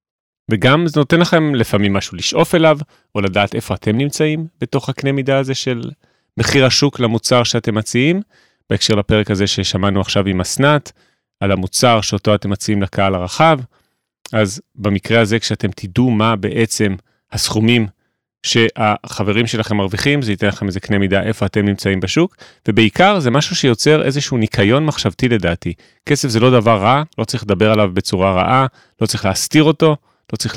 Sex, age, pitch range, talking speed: male, 30-49, 100-135 Hz, 155 wpm